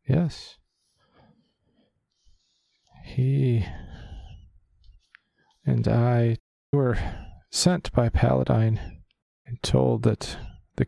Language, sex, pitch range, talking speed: English, male, 100-120 Hz, 65 wpm